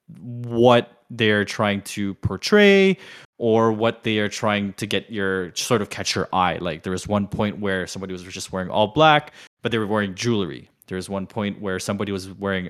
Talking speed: 205 wpm